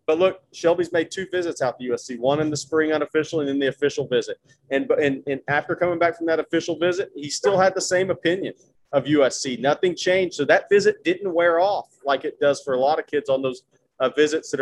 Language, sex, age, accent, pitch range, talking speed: English, male, 30-49, American, 145-200 Hz, 240 wpm